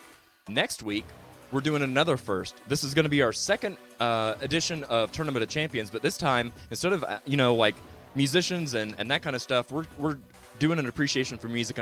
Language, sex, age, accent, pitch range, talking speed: English, male, 20-39, American, 100-140 Hz, 205 wpm